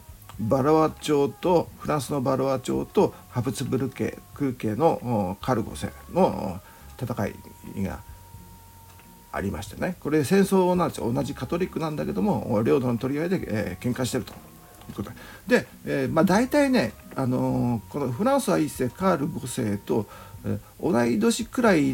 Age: 50-69